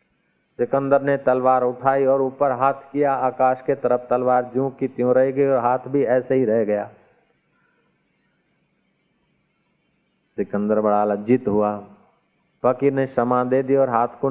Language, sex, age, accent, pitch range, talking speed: Hindi, male, 50-69, native, 110-140 Hz, 150 wpm